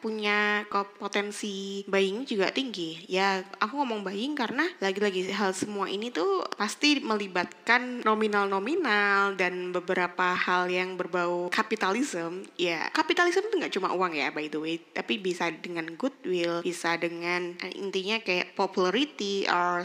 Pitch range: 180-220 Hz